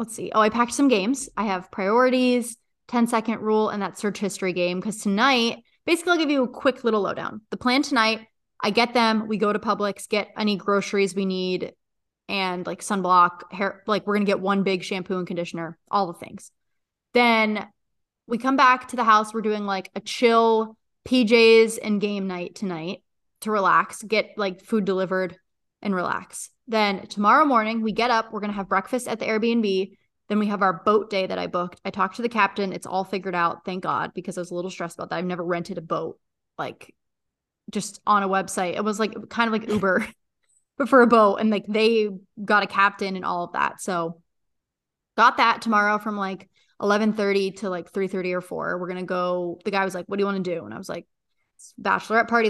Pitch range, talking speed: 190-225 Hz, 220 wpm